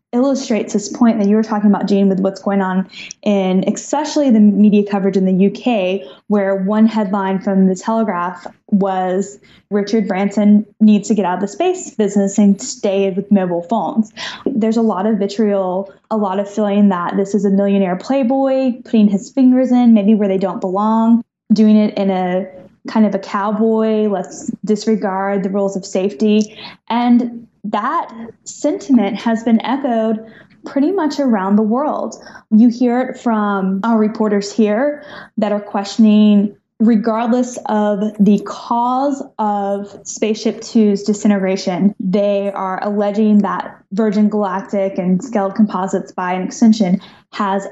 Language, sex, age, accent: English, female, 10-29, American